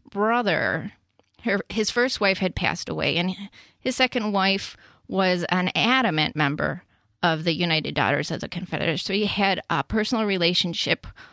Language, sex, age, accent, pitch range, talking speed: English, female, 30-49, American, 165-200 Hz, 150 wpm